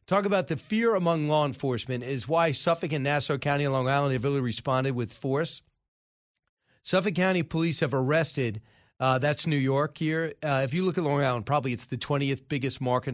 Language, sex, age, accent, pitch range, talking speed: English, male, 40-59, American, 130-160 Hz, 195 wpm